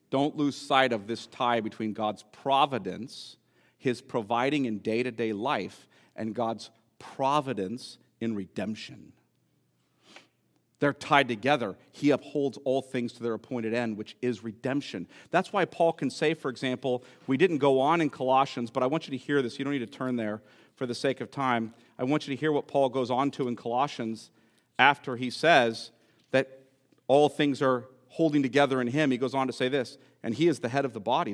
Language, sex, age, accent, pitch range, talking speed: English, male, 50-69, American, 125-190 Hz, 195 wpm